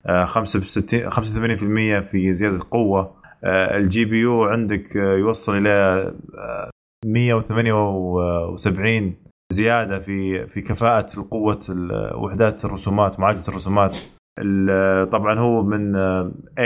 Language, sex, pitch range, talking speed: Arabic, male, 95-115 Hz, 85 wpm